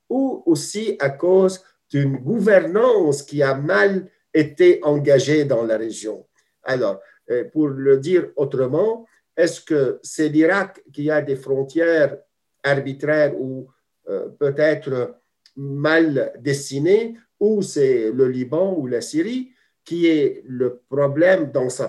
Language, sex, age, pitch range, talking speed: French, male, 50-69, 140-195 Hz, 125 wpm